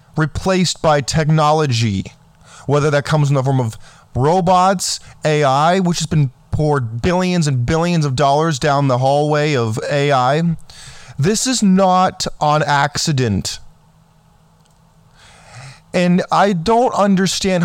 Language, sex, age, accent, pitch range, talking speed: English, male, 20-39, American, 145-185 Hz, 120 wpm